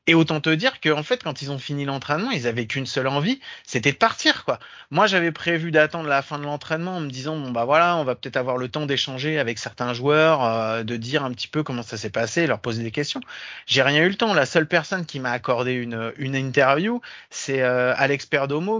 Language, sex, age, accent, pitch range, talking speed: French, male, 30-49, French, 130-165 Hz, 245 wpm